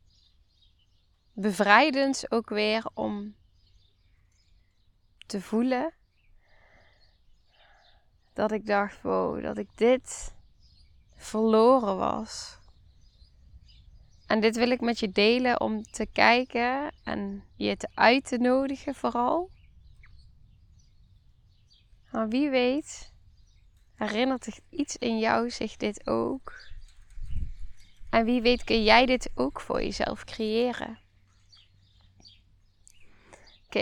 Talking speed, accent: 90 wpm, Dutch